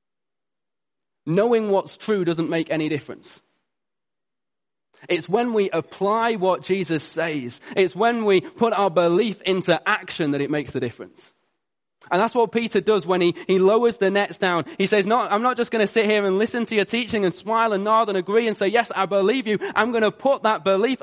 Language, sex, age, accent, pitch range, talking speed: English, male, 20-39, British, 185-235 Hz, 205 wpm